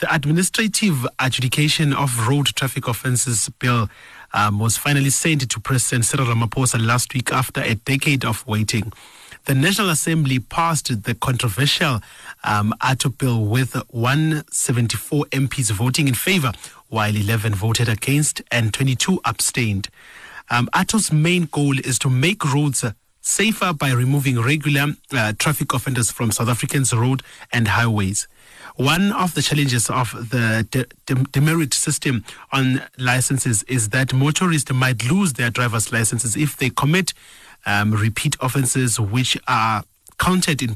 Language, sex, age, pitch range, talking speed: English, male, 30-49, 115-145 Hz, 140 wpm